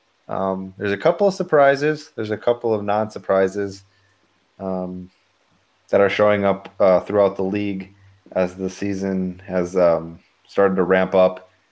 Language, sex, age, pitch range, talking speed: English, male, 20-39, 95-105 Hz, 145 wpm